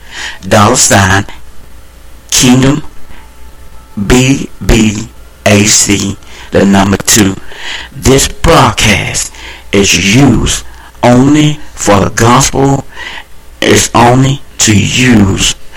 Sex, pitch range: male, 70-110 Hz